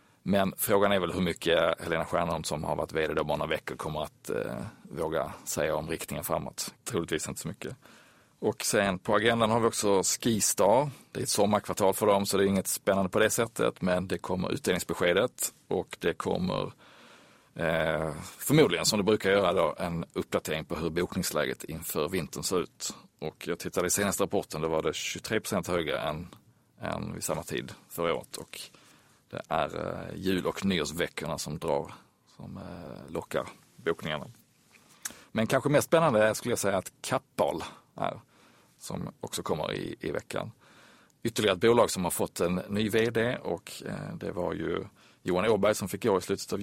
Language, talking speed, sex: Swedish, 180 wpm, male